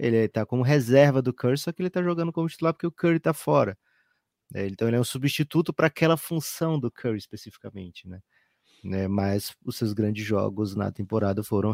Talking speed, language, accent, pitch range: 195 wpm, Portuguese, Brazilian, 105-125 Hz